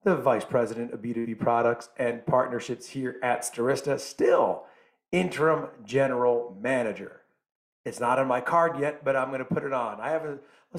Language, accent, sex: English, American, male